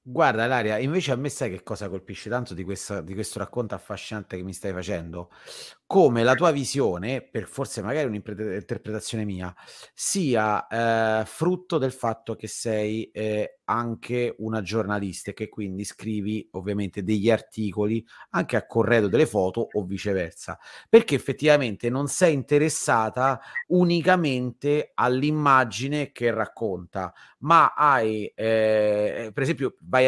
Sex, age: male, 30-49